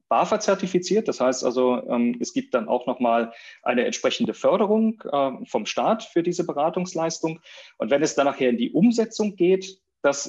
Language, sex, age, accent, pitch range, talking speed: German, male, 30-49, German, 120-180 Hz, 155 wpm